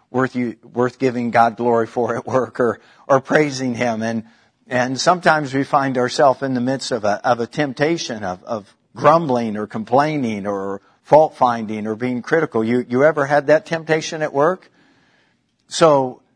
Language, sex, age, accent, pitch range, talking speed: English, male, 50-69, American, 115-140 Hz, 170 wpm